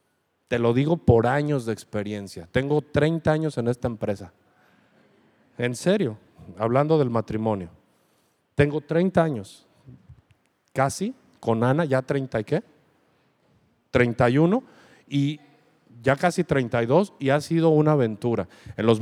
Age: 50-69